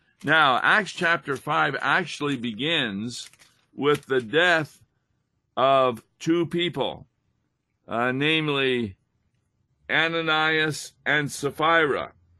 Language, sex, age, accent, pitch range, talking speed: English, male, 50-69, American, 120-155 Hz, 80 wpm